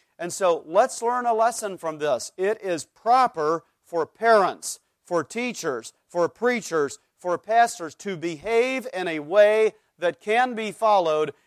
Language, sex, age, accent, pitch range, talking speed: English, male, 40-59, American, 145-195 Hz, 145 wpm